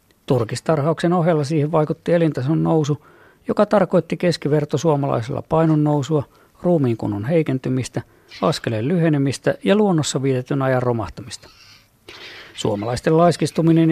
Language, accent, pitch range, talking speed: Finnish, native, 120-160 Hz, 95 wpm